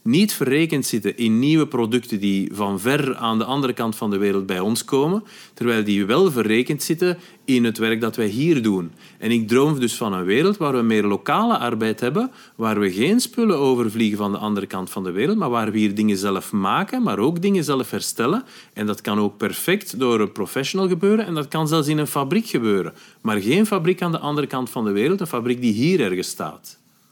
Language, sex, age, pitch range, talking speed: Dutch, male, 40-59, 110-165 Hz, 225 wpm